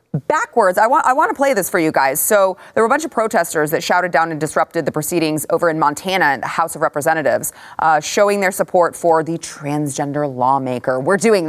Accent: American